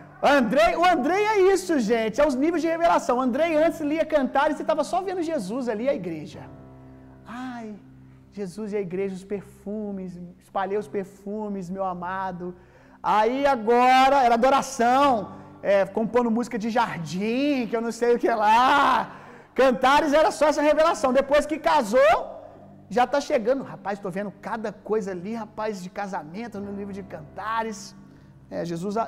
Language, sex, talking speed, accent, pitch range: Gujarati, male, 165 wpm, Brazilian, 195-265 Hz